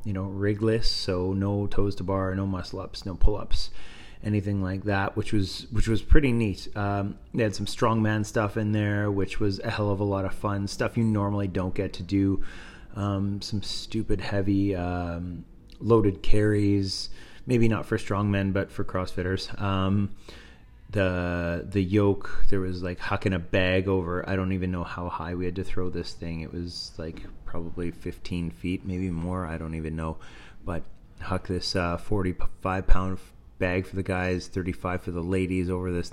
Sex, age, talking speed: male, 30-49, 185 wpm